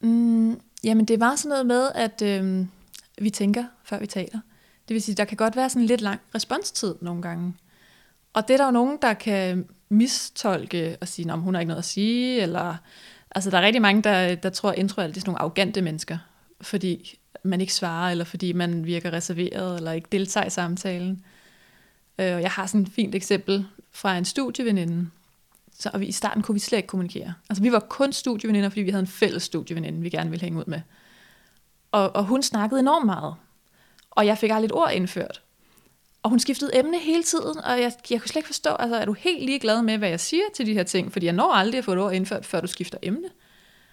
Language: Danish